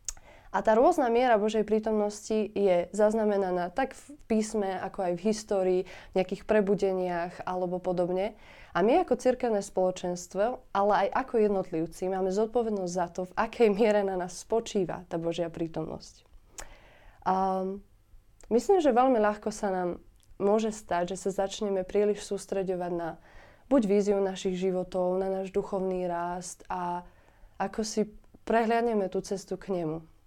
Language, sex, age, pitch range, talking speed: Slovak, female, 20-39, 185-215 Hz, 145 wpm